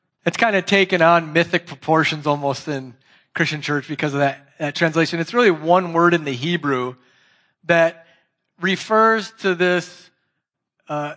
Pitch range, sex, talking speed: 165-200 Hz, male, 150 wpm